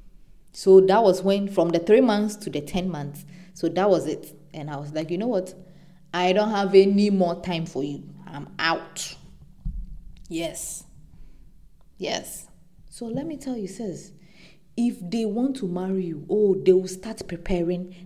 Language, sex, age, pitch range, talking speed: English, female, 20-39, 170-205 Hz, 175 wpm